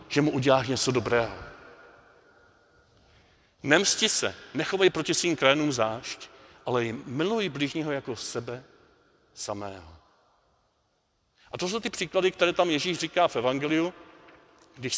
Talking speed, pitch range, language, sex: 125 wpm, 125-165 Hz, Czech, male